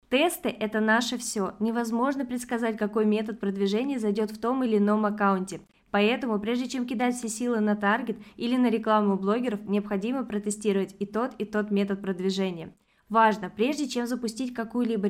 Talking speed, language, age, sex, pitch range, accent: 165 wpm, Russian, 20-39, female, 205-240 Hz, native